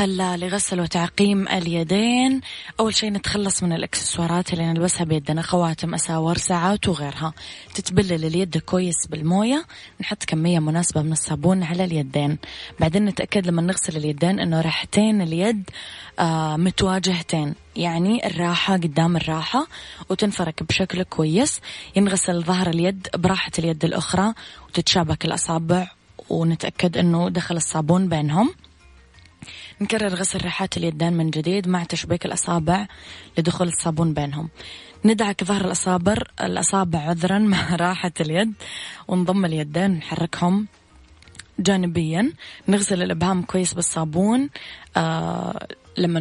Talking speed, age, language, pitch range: 110 wpm, 20-39, English, 165-195 Hz